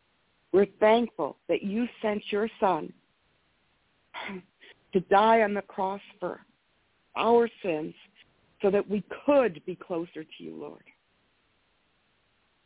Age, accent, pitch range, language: 60-79, American, 185-235 Hz, English